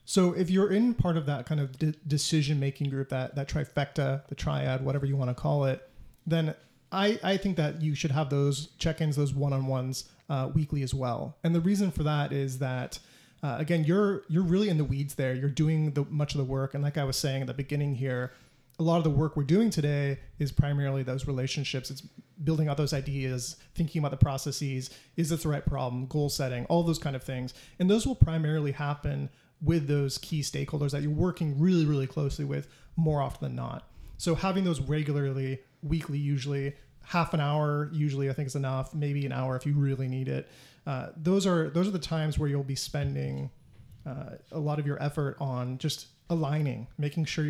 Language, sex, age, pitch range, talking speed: English, male, 30-49, 135-155 Hz, 210 wpm